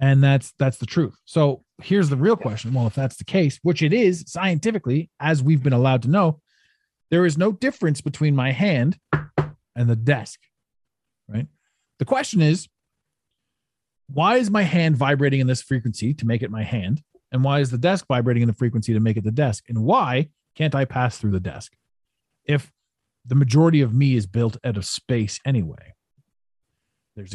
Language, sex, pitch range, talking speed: English, male, 115-155 Hz, 190 wpm